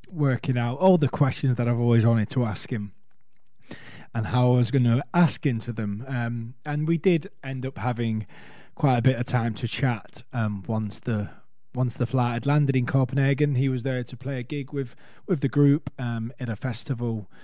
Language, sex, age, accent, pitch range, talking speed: English, male, 20-39, British, 115-145 Hz, 205 wpm